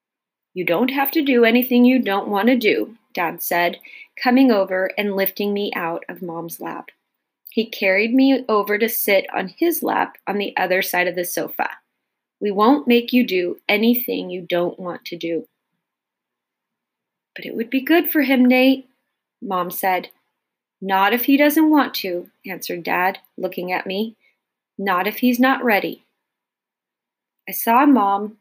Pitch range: 185-250 Hz